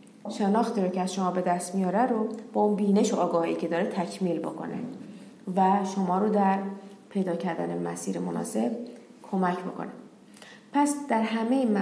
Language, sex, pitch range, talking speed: Persian, female, 190-230 Hz, 155 wpm